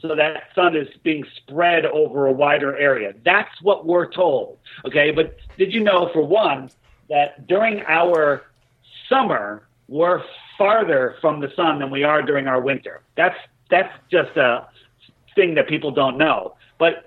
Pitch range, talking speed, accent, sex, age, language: 145-190 Hz, 160 wpm, American, male, 50-69, English